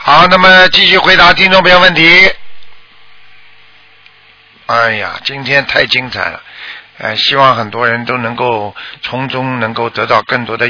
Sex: male